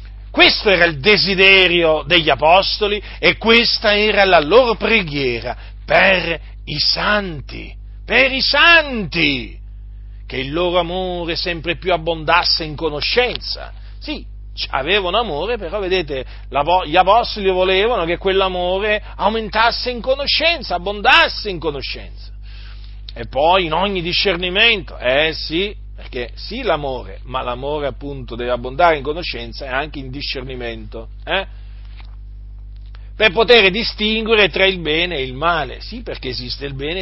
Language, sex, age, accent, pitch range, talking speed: Italian, male, 40-59, native, 130-210 Hz, 125 wpm